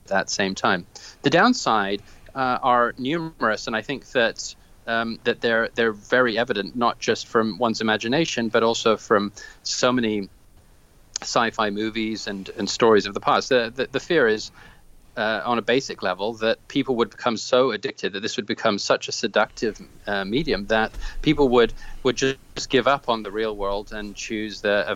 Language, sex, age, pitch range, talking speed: English, male, 30-49, 105-135 Hz, 185 wpm